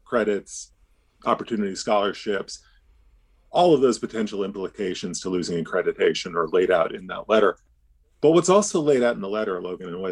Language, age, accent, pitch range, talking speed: English, 40-59, American, 80-120 Hz, 165 wpm